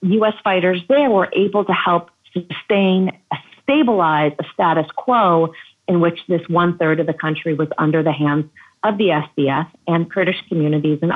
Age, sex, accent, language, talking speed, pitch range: 40-59, female, American, English, 160 wpm, 155-200 Hz